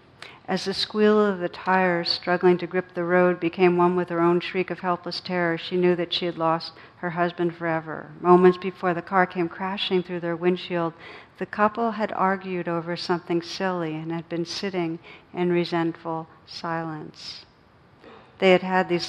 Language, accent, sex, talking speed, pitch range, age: English, American, female, 175 wpm, 165-185 Hz, 60-79